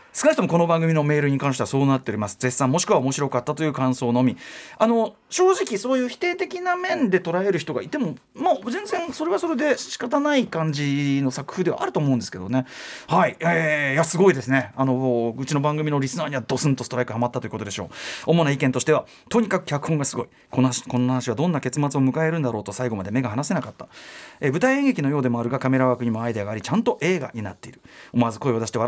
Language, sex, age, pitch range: Japanese, male, 30-49, 125-180 Hz